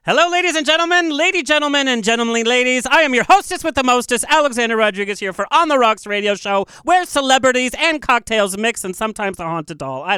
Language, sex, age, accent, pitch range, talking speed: English, male, 40-59, American, 195-270 Hz, 210 wpm